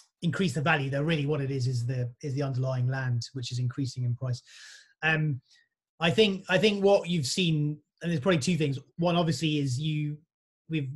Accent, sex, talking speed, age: British, male, 205 wpm, 30-49